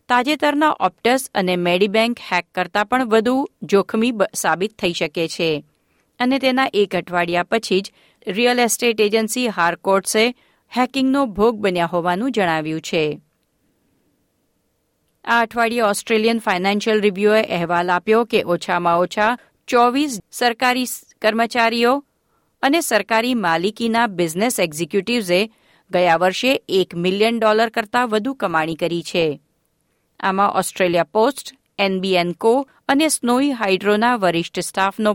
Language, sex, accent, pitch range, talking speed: Gujarati, female, native, 180-235 Hz, 90 wpm